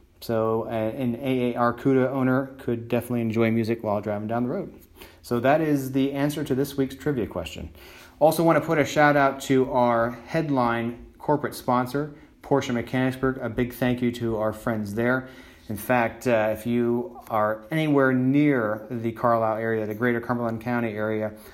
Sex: male